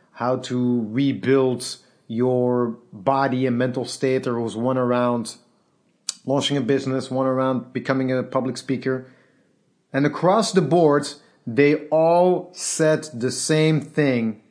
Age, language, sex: 30-49, English, male